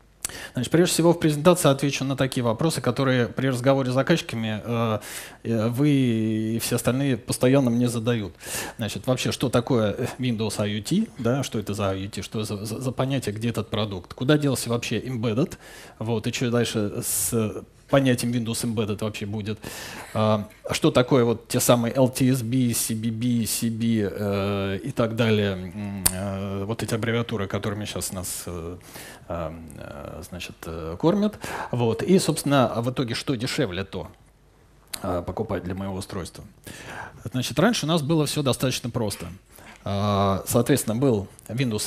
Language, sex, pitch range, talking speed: Russian, male, 105-130 Hz, 140 wpm